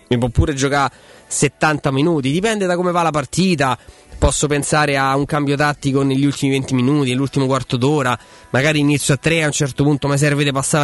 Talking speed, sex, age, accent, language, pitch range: 200 wpm, male, 20-39, native, Italian, 130-170 Hz